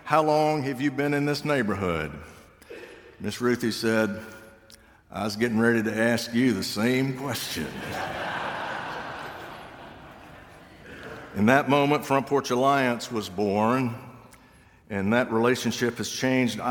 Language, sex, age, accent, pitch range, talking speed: English, male, 60-79, American, 95-120 Hz, 120 wpm